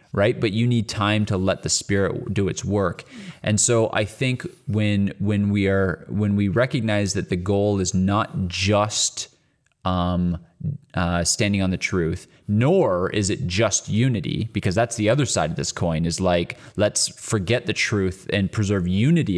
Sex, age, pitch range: male, 20-39, 95-110 Hz